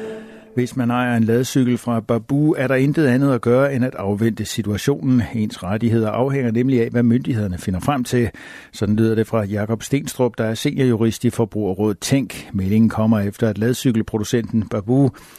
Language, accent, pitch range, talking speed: Danish, native, 105-130 Hz, 175 wpm